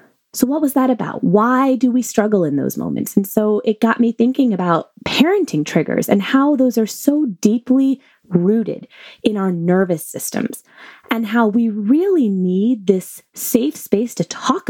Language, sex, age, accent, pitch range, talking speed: English, female, 20-39, American, 185-245 Hz, 170 wpm